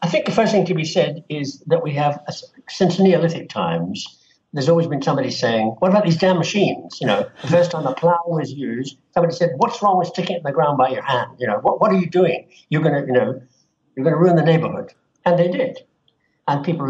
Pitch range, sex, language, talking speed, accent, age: 135-180 Hz, male, English, 250 wpm, British, 60-79